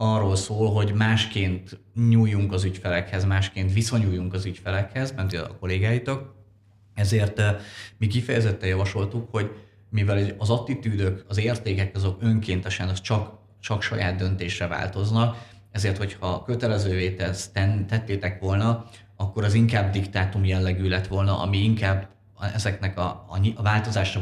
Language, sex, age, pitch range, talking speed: Hungarian, male, 30-49, 95-105 Hz, 120 wpm